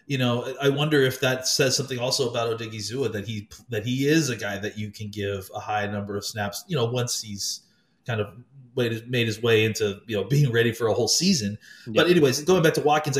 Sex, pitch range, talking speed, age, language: male, 110-140 Hz, 230 wpm, 30-49, English